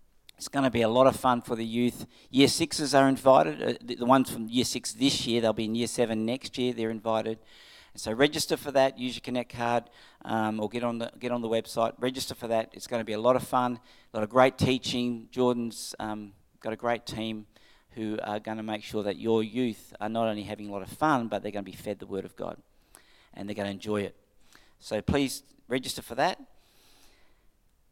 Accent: Australian